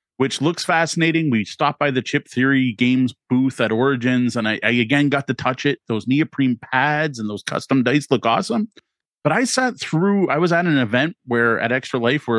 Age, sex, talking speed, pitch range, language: 30-49, male, 215 wpm, 115-150 Hz, English